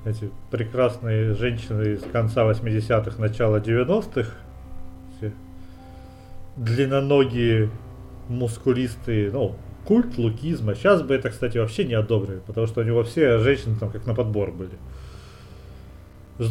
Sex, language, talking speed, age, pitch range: male, Russian, 115 wpm, 30-49, 100-130 Hz